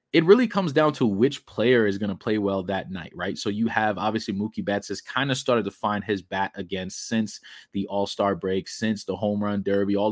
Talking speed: 235 wpm